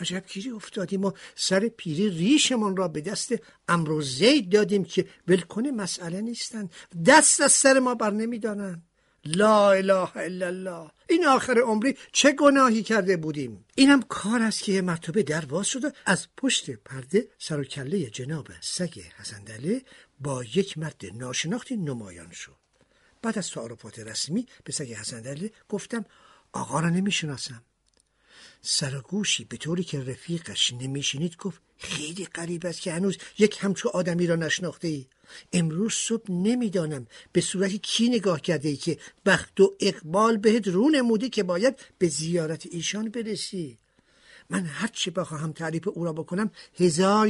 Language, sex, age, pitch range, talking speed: Persian, male, 60-79, 155-215 Hz, 145 wpm